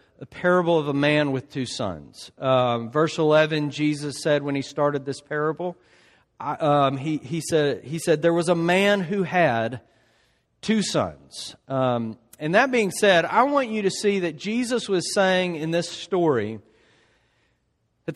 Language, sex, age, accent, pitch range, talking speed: English, male, 40-59, American, 140-185 Hz, 170 wpm